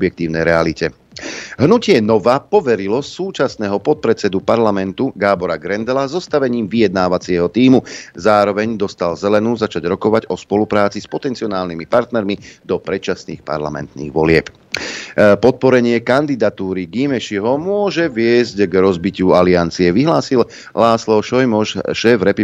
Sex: male